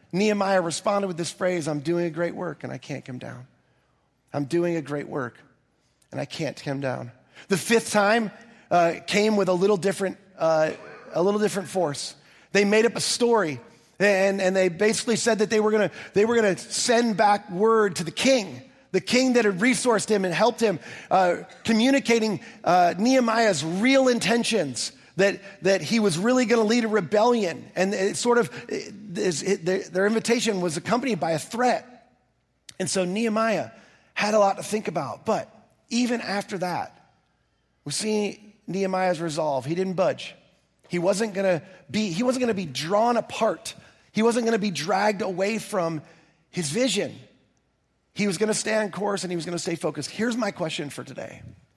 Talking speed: 180 wpm